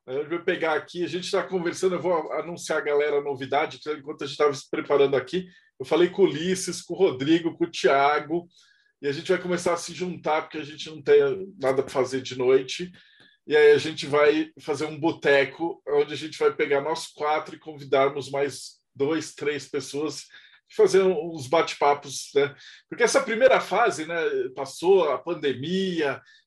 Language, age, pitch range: Portuguese, 20-39, 155-210 Hz